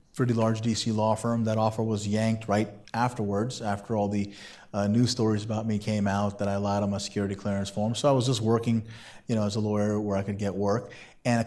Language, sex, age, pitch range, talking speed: English, male, 30-49, 105-120 Hz, 240 wpm